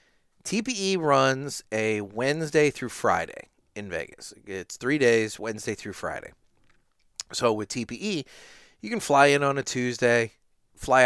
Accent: American